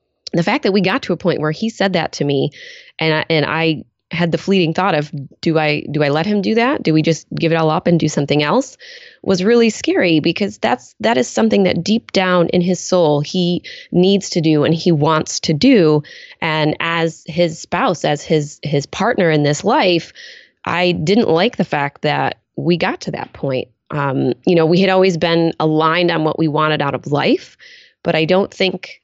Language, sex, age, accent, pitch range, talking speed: English, female, 20-39, American, 155-190 Hz, 215 wpm